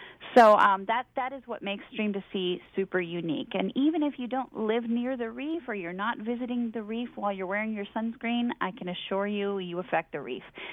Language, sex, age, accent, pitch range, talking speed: English, female, 30-49, American, 180-245 Hz, 225 wpm